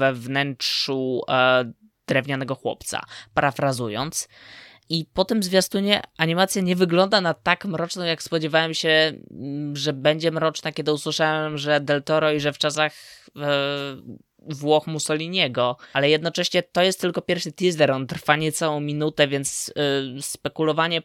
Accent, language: native, Polish